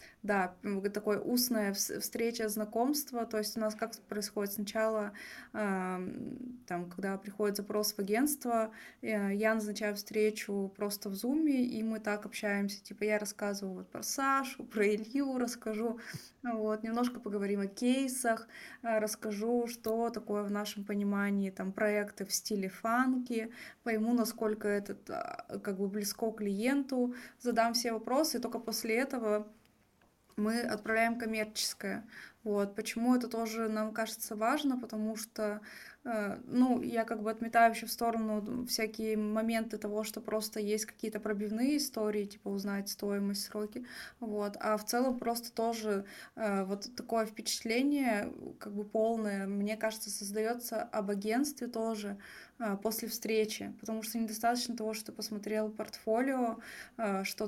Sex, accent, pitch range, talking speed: female, native, 210-230 Hz, 135 wpm